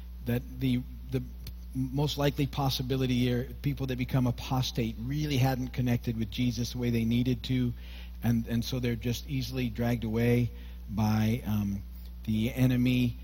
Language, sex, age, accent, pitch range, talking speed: English, male, 50-69, American, 115-145 Hz, 150 wpm